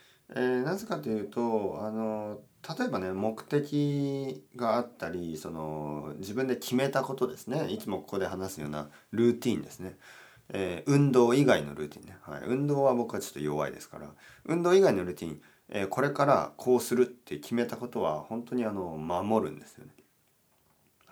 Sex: male